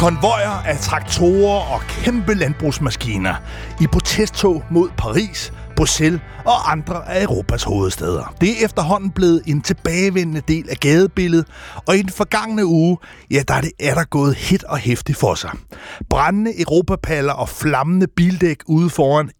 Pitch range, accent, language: 130-180 Hz, native, Danish